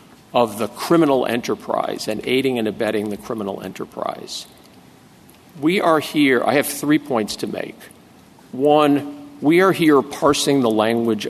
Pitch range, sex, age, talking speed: 115-150 Hz, male, 50-69, 145 wpm